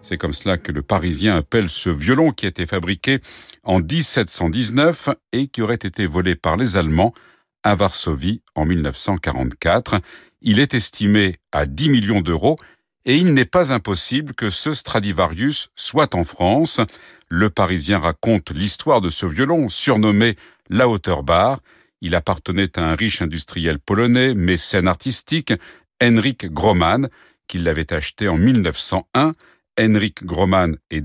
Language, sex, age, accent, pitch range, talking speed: French, male, 50-69, French, 85-120 Hz, 145 wpm